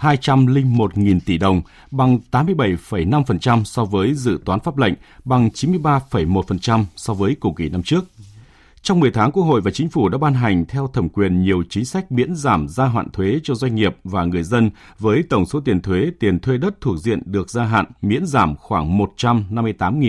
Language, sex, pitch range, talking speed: Vietnamese, male, 95-135 Hz, 190 wpm